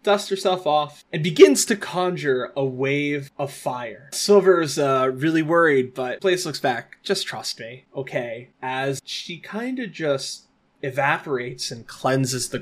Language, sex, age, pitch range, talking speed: English, male, 20-39, 130-170 Hz, 155 wpm